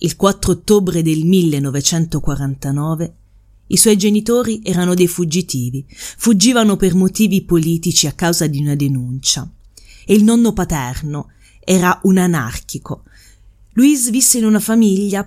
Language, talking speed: Italian, 125 wpm